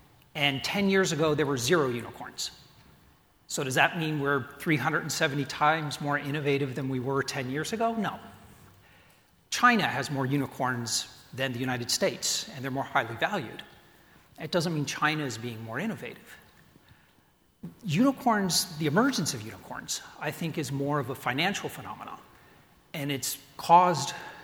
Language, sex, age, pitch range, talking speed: English, male, 40-59, 135-180 Hz, 150 wpm